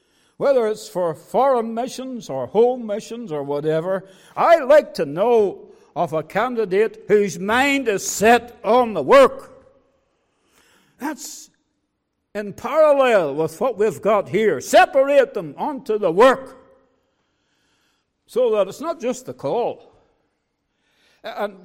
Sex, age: male, 60-79